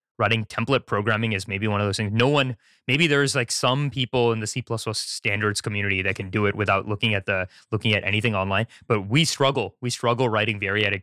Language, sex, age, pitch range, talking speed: English, male, 20-39, 105-130 Hz, 220 wpm